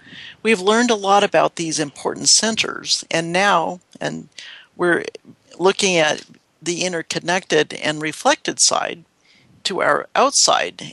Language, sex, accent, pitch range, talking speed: English, male, American, 160-205 Hz, 120 wpm